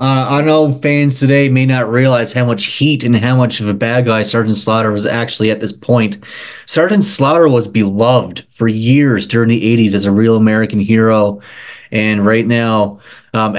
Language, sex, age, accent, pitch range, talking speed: English, male, 30-49, American, 100-120 Hz, 190 wpm